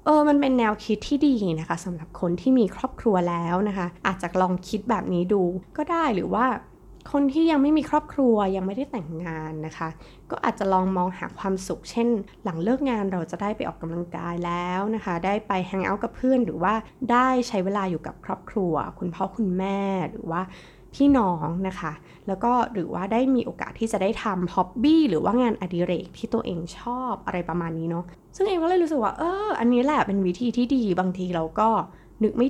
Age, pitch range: 20-39, 175-240 Hz